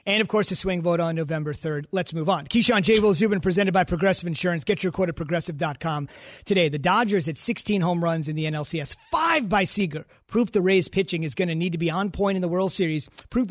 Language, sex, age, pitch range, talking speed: English, male, 30-49, 170-200 Hz, 245 wpm